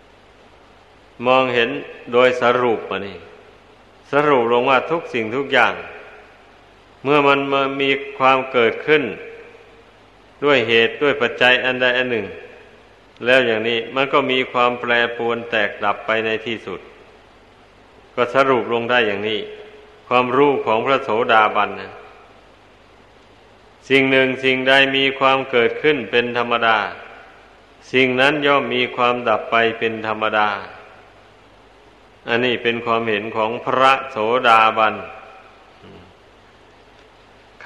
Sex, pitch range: male, 110-135 Hz